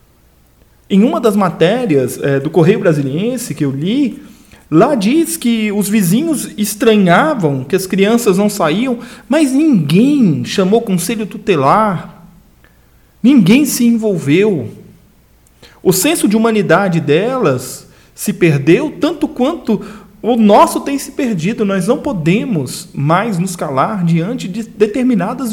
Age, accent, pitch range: 40-59, Brazilian, 140-215 Hz